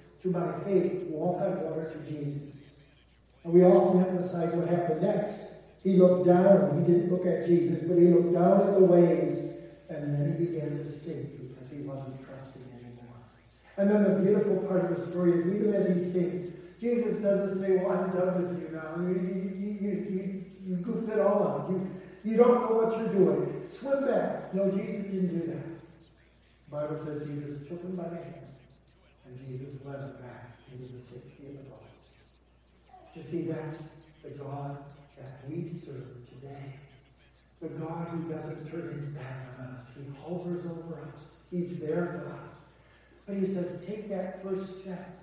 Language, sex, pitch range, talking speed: English, male, 145-185 Hz, 185 wpm